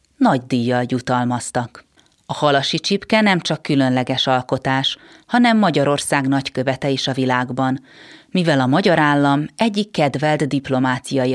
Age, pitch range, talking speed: 30-49, 130-160 Hz, 120 wpm